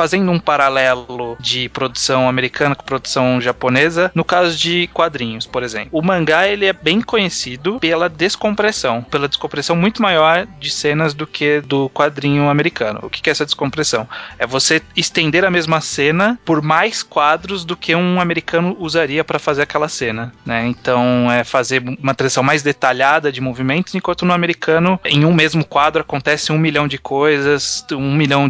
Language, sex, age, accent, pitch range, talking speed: Portuguese, male, 20-39, Brazilian, 130-175 Hz, 170 wpm